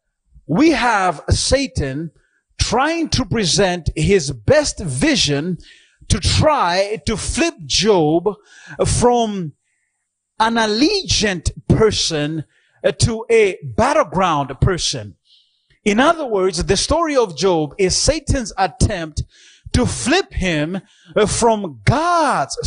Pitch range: 160-230 Hz